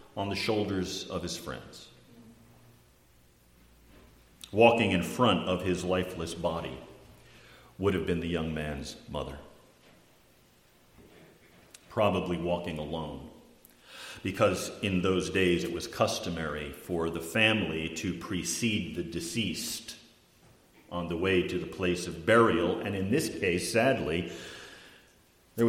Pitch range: 85-120 Hz